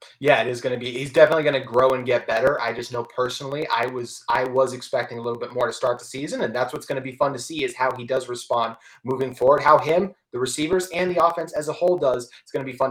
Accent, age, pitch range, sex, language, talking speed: American, 30-49, 125-155 Hz, male, English, 295 wpm